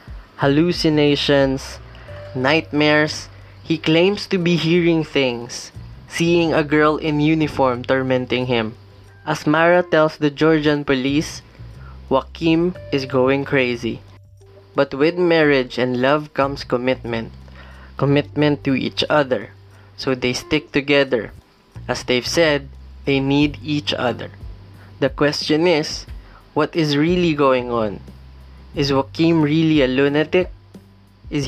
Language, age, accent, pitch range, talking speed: English, 20-39, Filipino, 115-155 Hz, 115 wpm